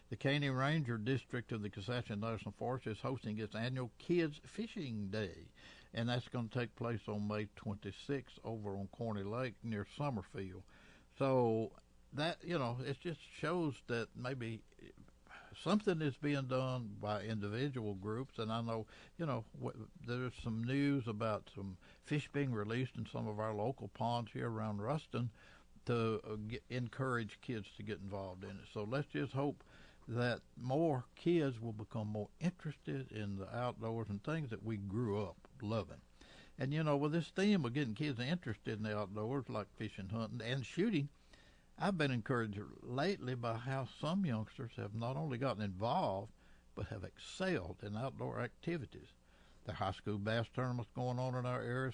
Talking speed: 170 wpm